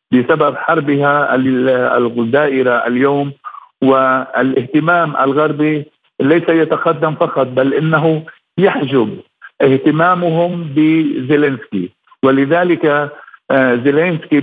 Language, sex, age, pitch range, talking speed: Arabic, male, 50-69, 140-160 Hz, 65 wpm